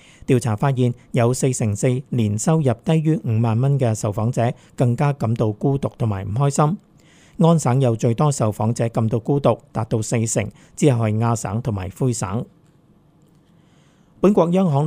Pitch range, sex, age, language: 115-140 Hz, male, 50-69, Chinese